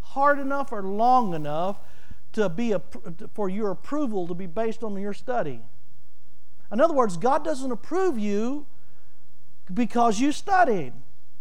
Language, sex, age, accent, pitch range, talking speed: English, male, 50-69, American, 230-330 Hz, 145 wpm